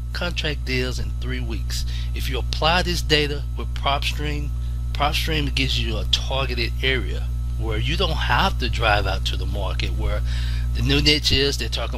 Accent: American